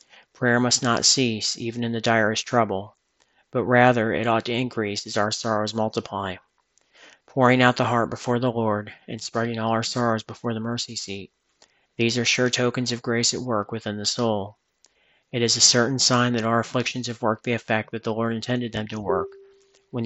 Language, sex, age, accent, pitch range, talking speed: English, male, 40-59, American, 110-120 Hz, 195 wpm